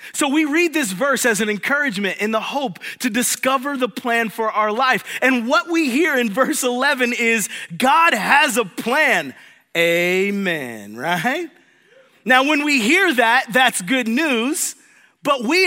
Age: 30-49